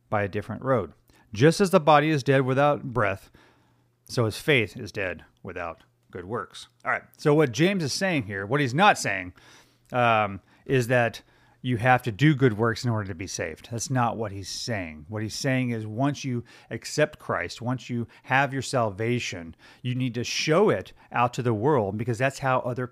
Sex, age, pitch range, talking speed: male, 30-49, 110-135 Hz, 200 wpm